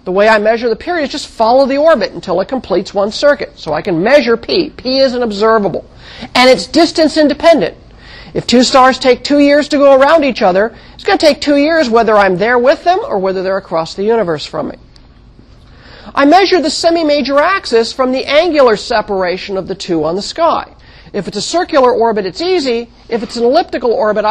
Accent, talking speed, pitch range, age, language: American, 210 wpm, 190-270 Hz, 40-59, English